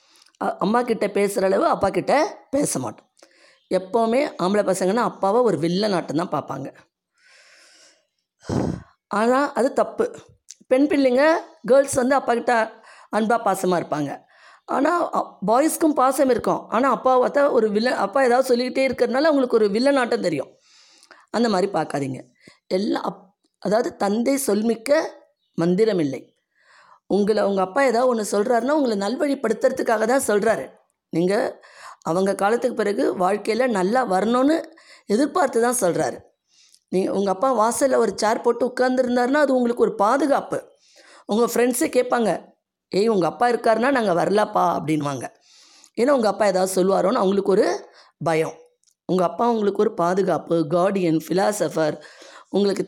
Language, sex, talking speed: Tamil, female, 125 wpm